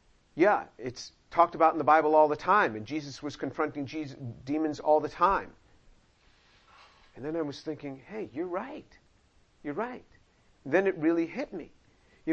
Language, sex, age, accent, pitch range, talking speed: English, male, 50-69, American, 150-180 Hz, 165 wpm